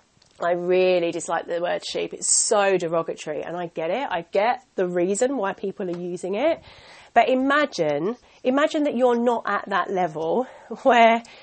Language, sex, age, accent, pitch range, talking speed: English, female, 30-49, British, 200-250 Hz, 170 wpm